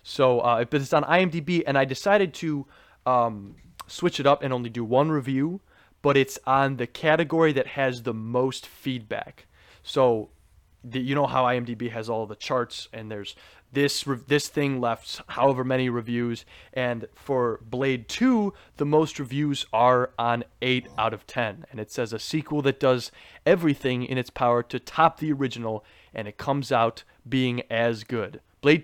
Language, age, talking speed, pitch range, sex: English, 20-39, 175 wpm, 120-145 Hz, male